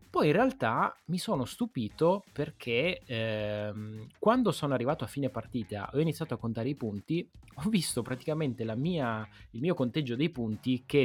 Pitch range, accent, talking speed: 110-140 Hz, native, 170 wpm